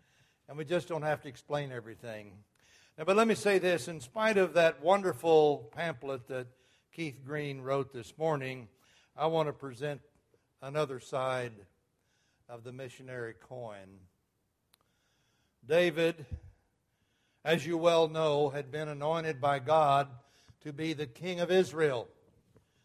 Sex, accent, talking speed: male, American, 135 wpm